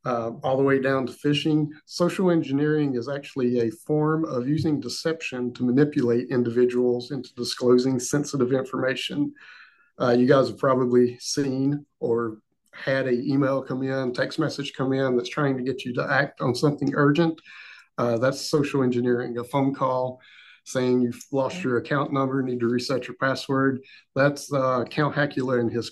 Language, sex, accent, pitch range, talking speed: English, male, American, 125-150 Hz, 170 wpm